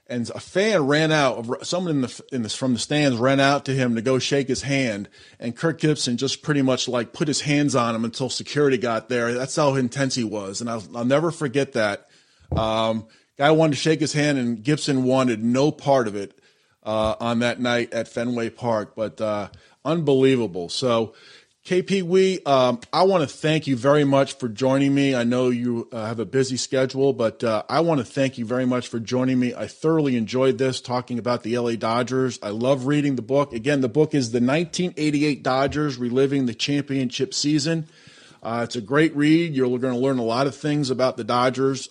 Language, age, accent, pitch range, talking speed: English, 30-49, American, 120-145 Hz, 215 wpm